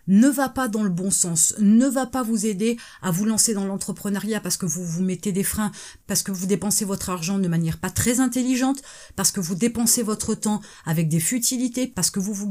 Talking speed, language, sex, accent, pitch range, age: 230 wpm, French, female, French, 195-245 Hz, 30-49